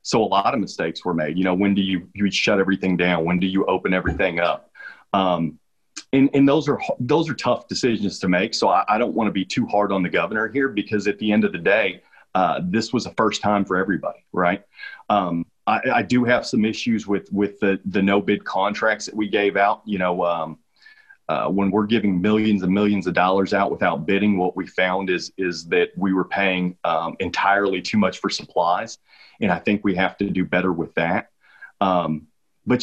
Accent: American